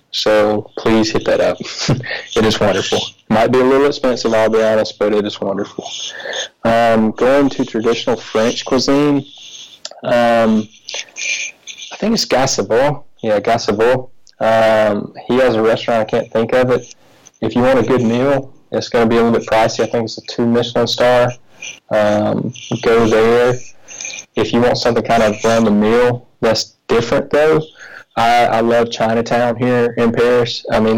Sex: male